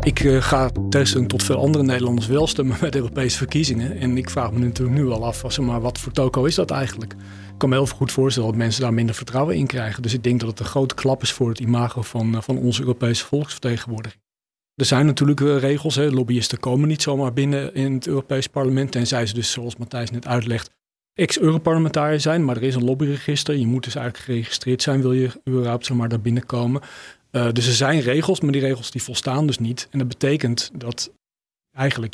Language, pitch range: Dutch, 120-140 Hz